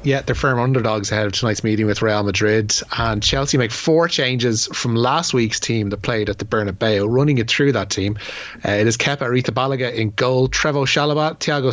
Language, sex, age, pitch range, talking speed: English, male, 30-49, 115-135 Hz, 210 wpm